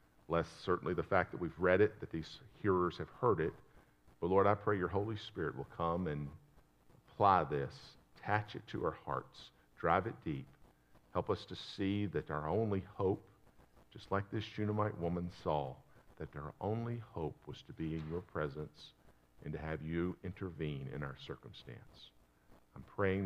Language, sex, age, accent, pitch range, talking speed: English, male, 50-69, American, 85-140 Hz, 175 wpm